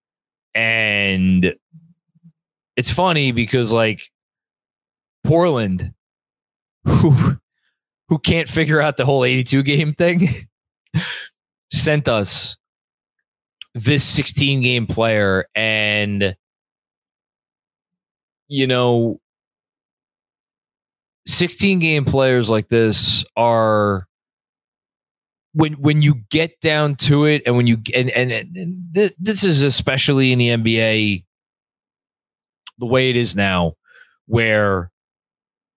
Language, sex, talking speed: English, male, 95 wpm